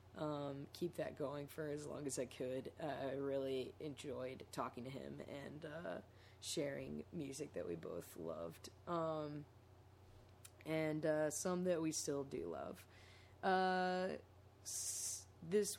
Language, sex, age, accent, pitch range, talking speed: English, female, 20-39, American, 150-190 Hz, 135 wpm